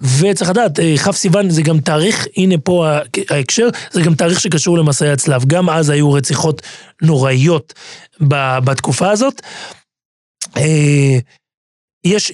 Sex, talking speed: male, 115 wpm